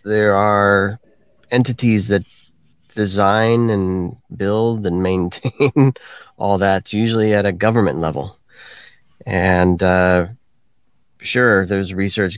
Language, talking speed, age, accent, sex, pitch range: English, 100 wpm, 30-49, American, male, 90-110 Hz